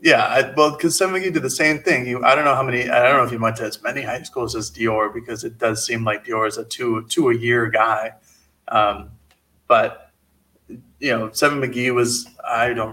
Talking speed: 230 wpm